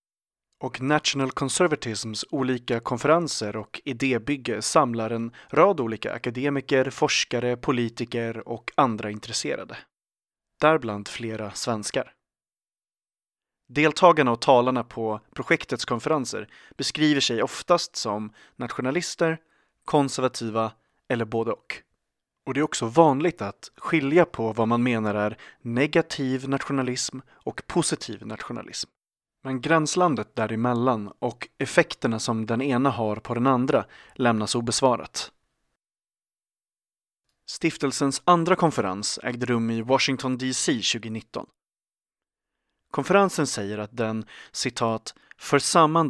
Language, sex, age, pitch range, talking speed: English, male, 30-49, 115-145 Hz, 105 wpm